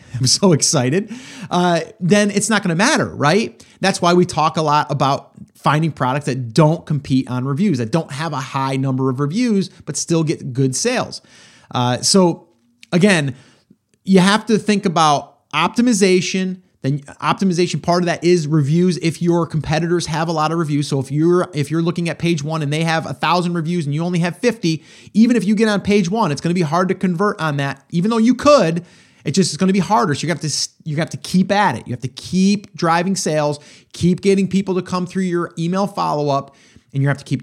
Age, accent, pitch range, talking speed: 30-49, American, 135-185 Hz, 225 wpm